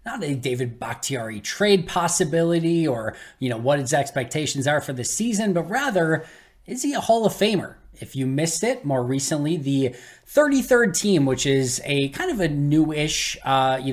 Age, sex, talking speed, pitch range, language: 20-39, male, 180 wpm, 130-165 Hz, English